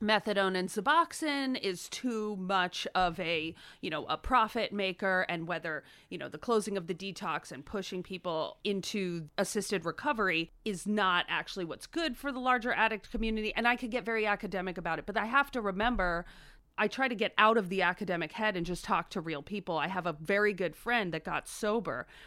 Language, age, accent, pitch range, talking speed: English, 30-49, American, 180-230 Hz, 200 wpm